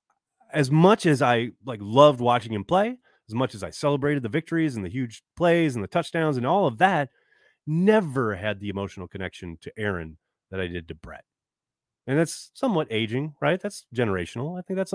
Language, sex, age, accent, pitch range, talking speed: English, male, 30-49, American, 105-155 Hz, 195 wpm